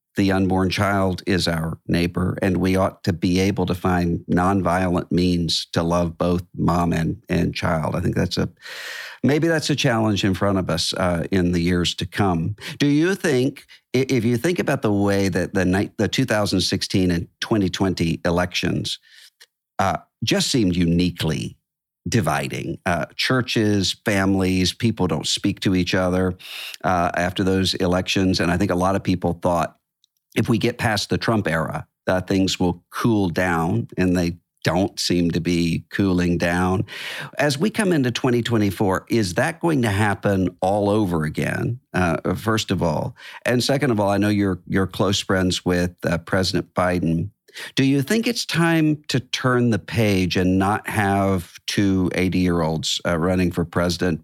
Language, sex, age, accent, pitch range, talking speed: English, male, 50-69, American, 90-110 Hz, 170 wpm